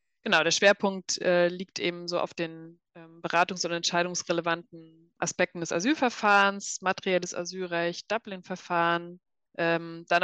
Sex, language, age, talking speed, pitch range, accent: female, German, 20-39, 125 wpm, 170-195 Hz, German